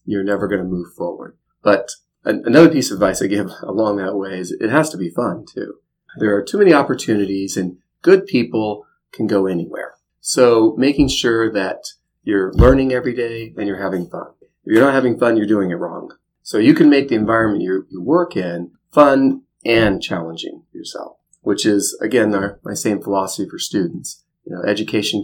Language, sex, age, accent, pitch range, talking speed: English, male, 30-49, American, 95-120 Hz, 190 wpm